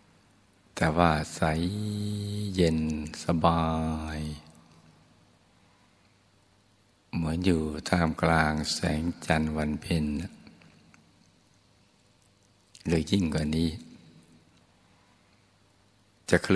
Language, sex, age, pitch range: Thai, male, 60-79, 80-100 Hz